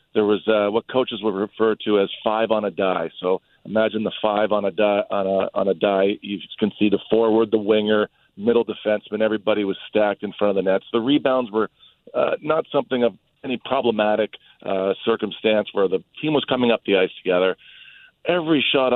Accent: American